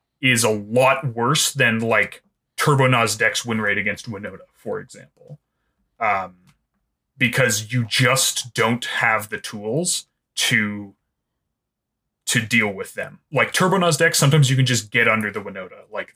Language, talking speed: English, 150 wpm